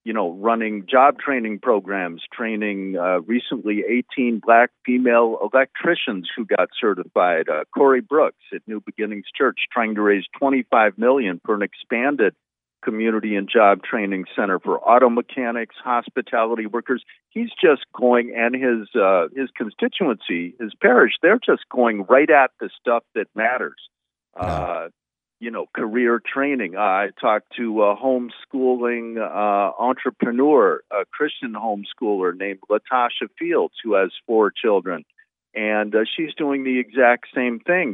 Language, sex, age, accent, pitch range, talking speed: English, male, 50-69, American, 105-125 Hz, 140 wpm